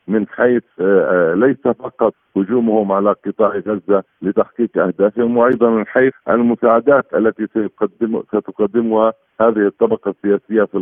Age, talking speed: 50-69, 110 wpm